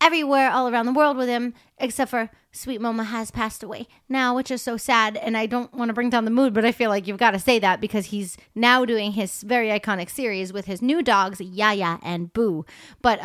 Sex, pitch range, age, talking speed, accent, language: female, 210-265 Hz, 30-49, 240 wpm, American, English